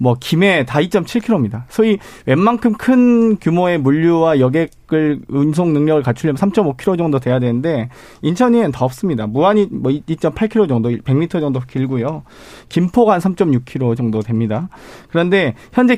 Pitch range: 135-200 Hz